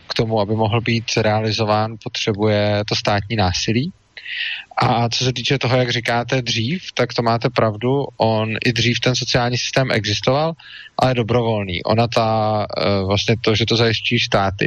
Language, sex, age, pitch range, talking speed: Czech, male, 20-39, 110-125 Hz, 160 wpm